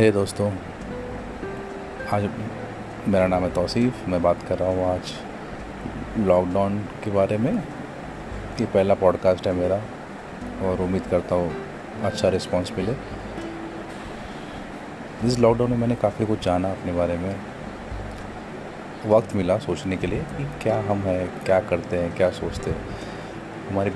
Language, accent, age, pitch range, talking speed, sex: Hindi, native, 30-49, 90-105 Hz, 140 wpm, male